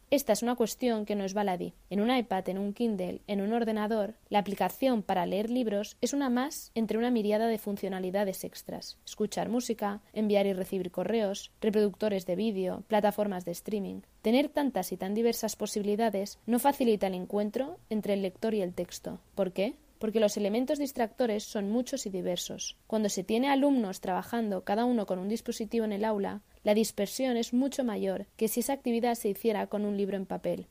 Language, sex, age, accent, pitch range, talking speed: Spanish, female, 20-39, Spanish, 200-235 Hz, 190 wpm